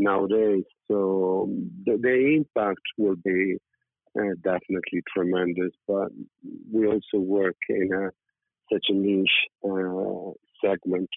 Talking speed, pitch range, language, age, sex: 115 wpm, 95-100 Hz, English, 50-69, male